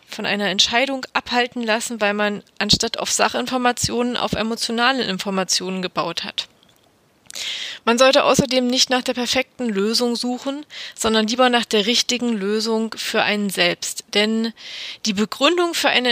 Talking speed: 140 wpm